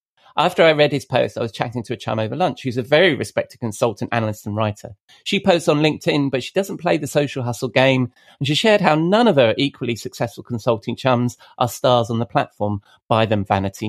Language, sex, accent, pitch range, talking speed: English, male, British, 110-150 Hz, 225 wpm